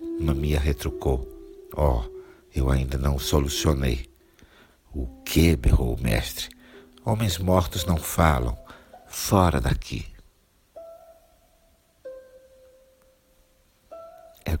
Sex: male